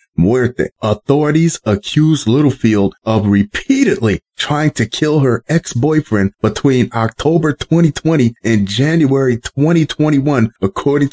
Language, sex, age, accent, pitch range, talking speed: English, male, 30-49, American, 105-140 Hz, 95 wpm